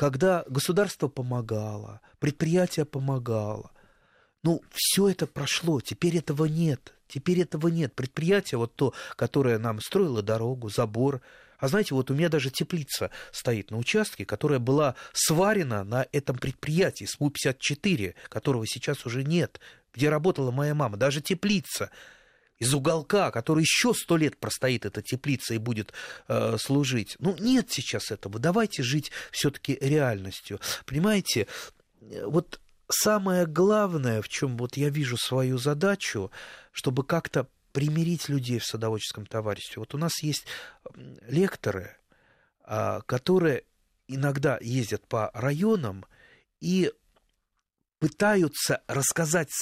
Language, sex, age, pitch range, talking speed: Russian, male, 30-49, 120-170 Hz, 125 wpm